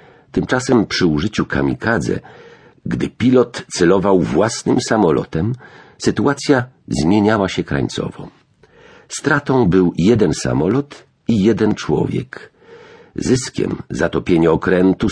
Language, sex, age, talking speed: Polish, male, 50-69, 90 wpm